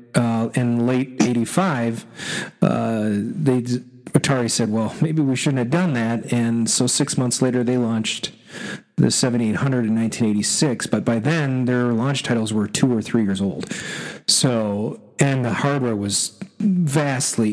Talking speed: 145 wpm